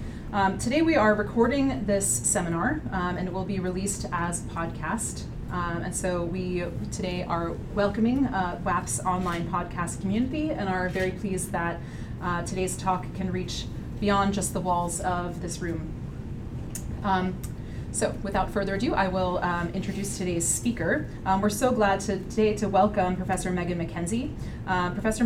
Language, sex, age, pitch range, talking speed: English, female, 30-49, 180-210 Hz, 160 wpm